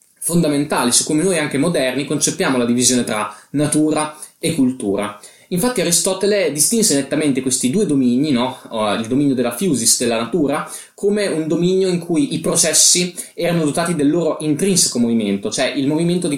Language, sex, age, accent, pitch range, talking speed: Italian, male, 20-39, native, 125-170 Hz, 160 wpm